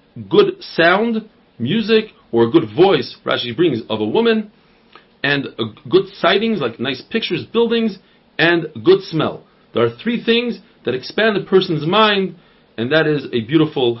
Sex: male